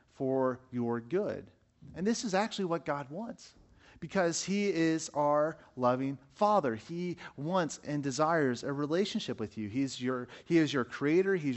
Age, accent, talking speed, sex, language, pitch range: 40-59, American, 160 wpm, male, English, 130-180 Hz